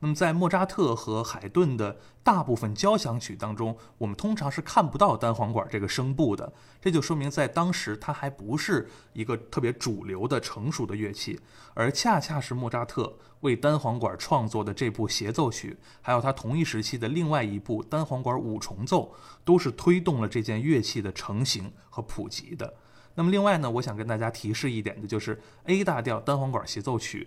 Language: Chinese